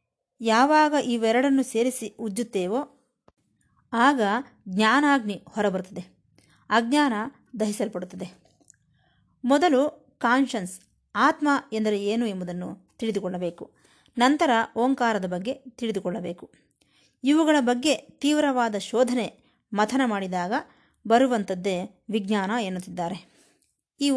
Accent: native